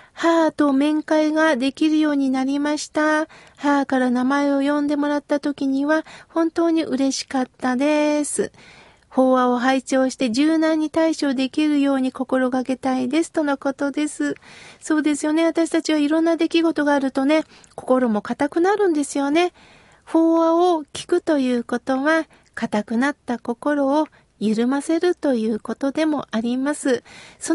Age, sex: 40-59, female